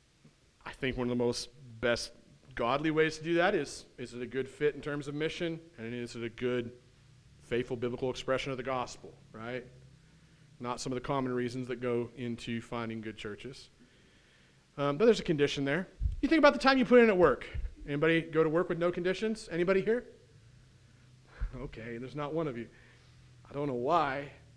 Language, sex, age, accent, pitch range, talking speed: English, male, 40-59, American, 125-175 Hz, 200 wpm